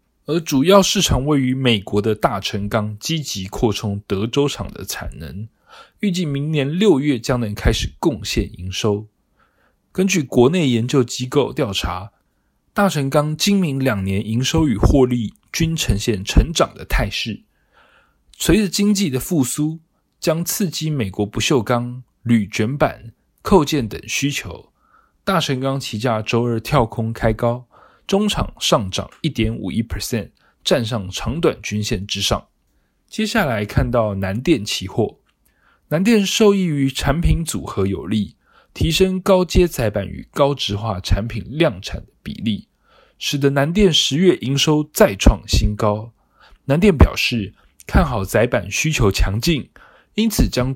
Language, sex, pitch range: Chinese, male, 105-150 Hz